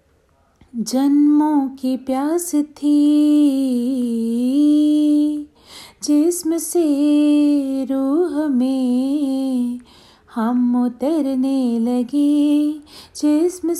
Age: 30-49